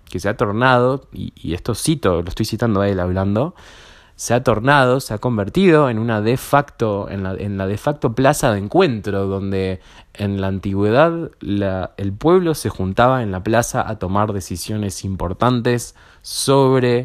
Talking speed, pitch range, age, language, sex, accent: 170 wpm, 95-120 Hz, 20-39, Spanish, male, Argentinian